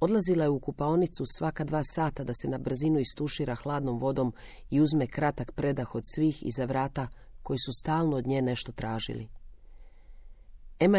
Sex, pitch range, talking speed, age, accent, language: female, 120-155 Hz, 165 wpm, 40-59, native, Croatian